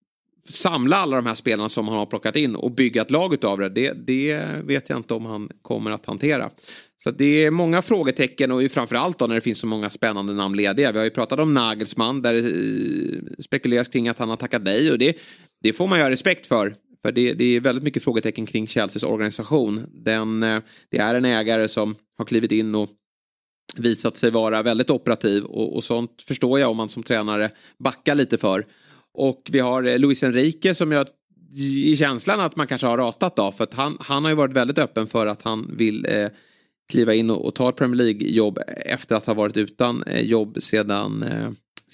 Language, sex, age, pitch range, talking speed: Swedish, male, 30-49, 110-135 Hz, 210 wpm